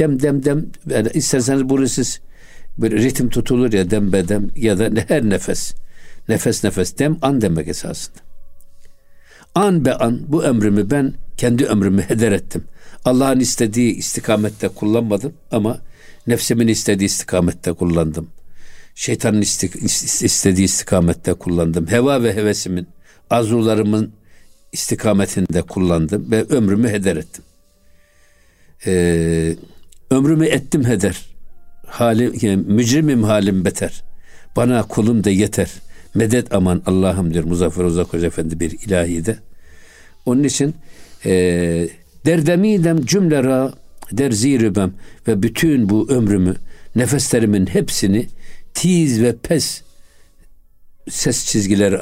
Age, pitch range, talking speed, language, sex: 60-79, 90-120 Hz, 115 wpm, Turkish, male